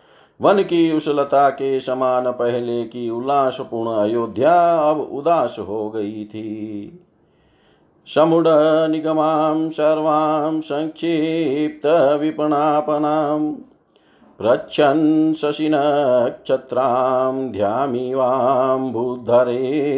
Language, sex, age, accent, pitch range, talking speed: Hindi, male, 50-69, native, 125-155 Hz, 70 wpm